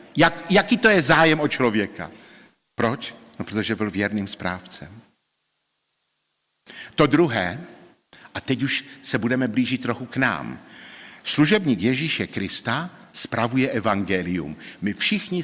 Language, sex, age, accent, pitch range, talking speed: Czech, male, 50-69, native, 110-165 Hz, 115 wpm